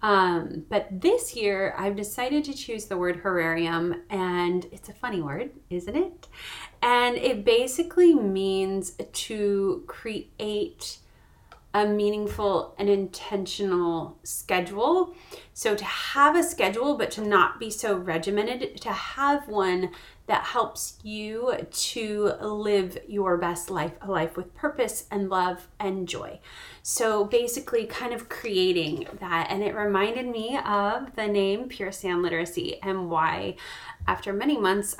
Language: English